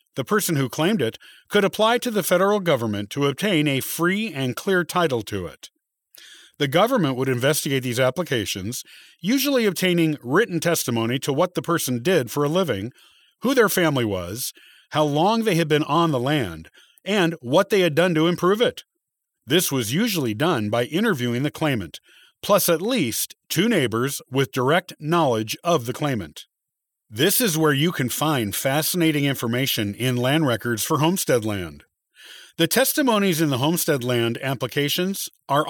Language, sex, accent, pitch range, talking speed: English, male, American, 125-175 Hz, 165 wpm